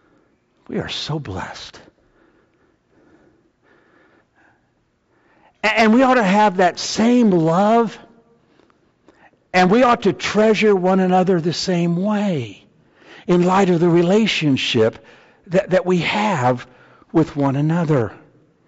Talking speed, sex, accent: 110 wpm, male, American